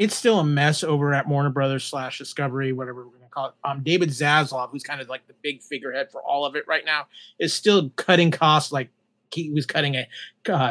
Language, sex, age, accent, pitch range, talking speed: English, male, 30-49, American, 135-165 Hz, 235 wpm